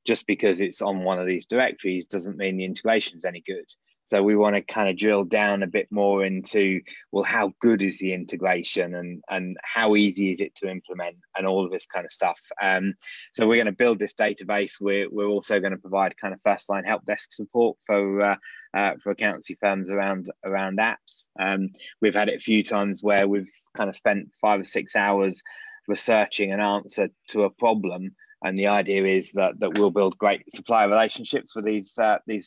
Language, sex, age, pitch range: English, male, 20-39, 95-105 Hz